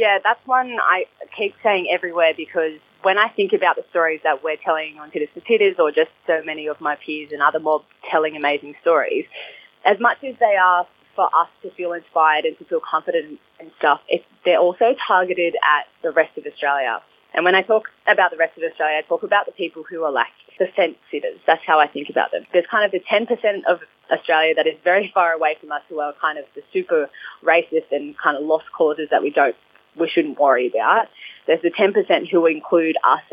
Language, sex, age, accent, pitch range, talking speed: English, female, 20-39, Australian, 160-210 Hz, 220 wpm